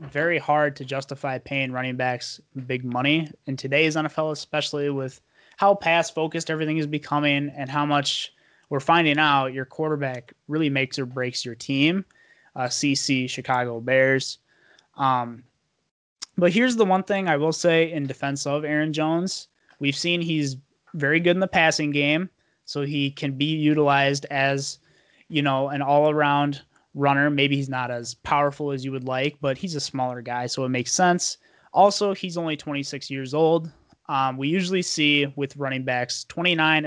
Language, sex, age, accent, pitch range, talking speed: English, male, 20-39, American, 135-165 Hz, 170 wpm